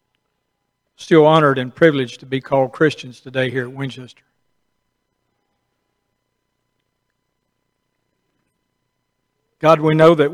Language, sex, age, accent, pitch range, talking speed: English, male, 50-69, American, 125-155 Hz, 95 wpm